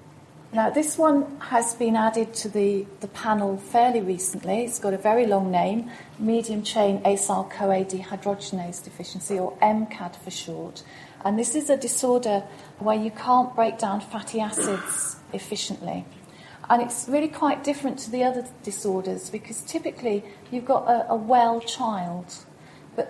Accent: British